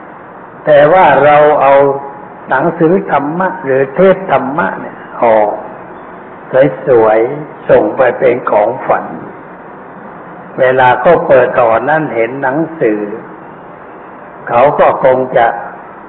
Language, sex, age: Thai, male, 60-79